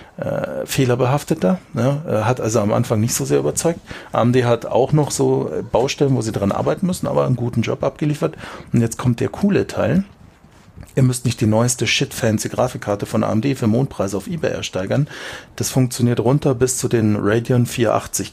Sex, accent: male, German